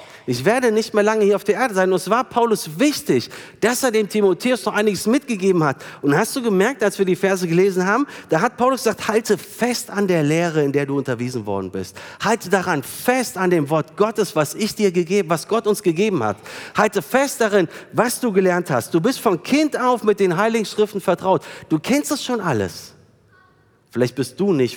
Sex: male